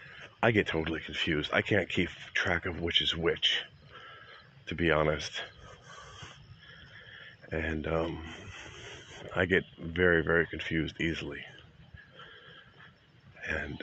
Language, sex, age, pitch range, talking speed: English, male, 40-59, 80-95 Hz, 105 wpm